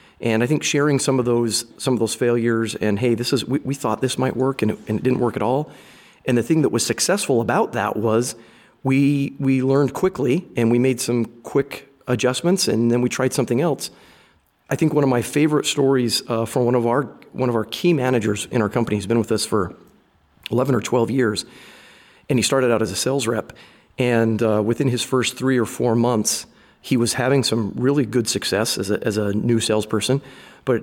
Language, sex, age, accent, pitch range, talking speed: English, male, 40-59, American, 115-135 Hz, 220 wpm